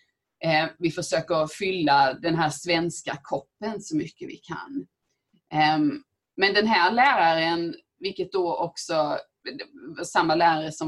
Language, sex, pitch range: Swedish, female, 155-245 Hz